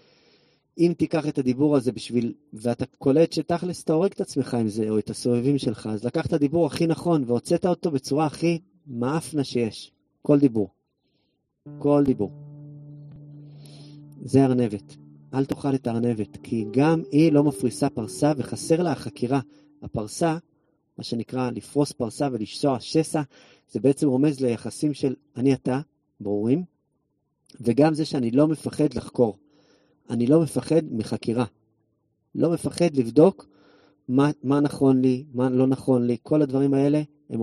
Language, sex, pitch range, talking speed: English, male, 120-150 Hz, 135 wpm